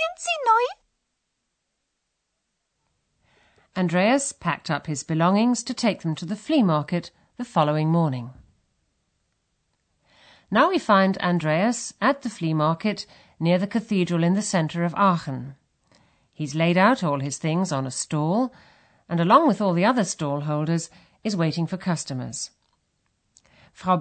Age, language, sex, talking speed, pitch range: 50-69, German, female, 130 wpm, 150-215 Hz